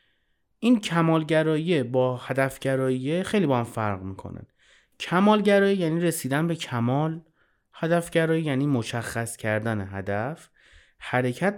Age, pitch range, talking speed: 30-49, 110-155 Hz, 105 wpm